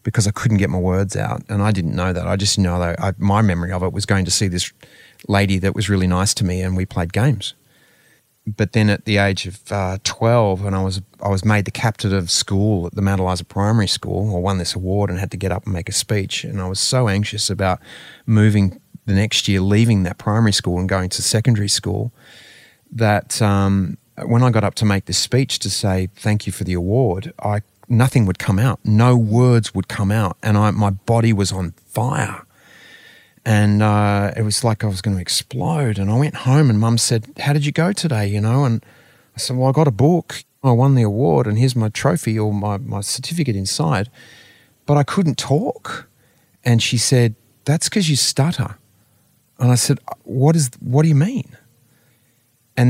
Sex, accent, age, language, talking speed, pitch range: male, Australian, 30-49, English, 220 wpm, 100-125 Hz